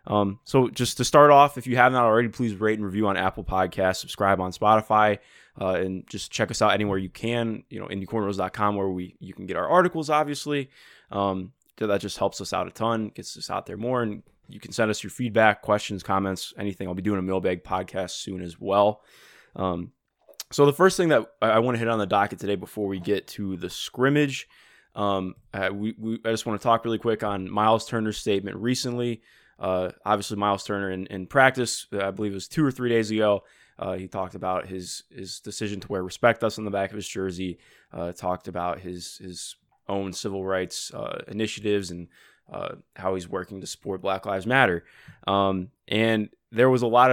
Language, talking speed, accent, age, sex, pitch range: English, 215 wpm, American, 20-39, male, 95-115 Hz